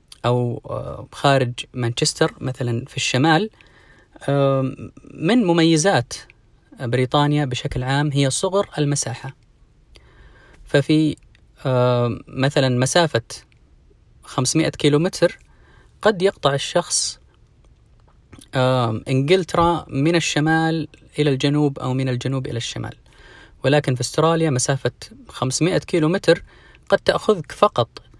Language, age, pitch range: Arabic, 30-49, 125-155 Hz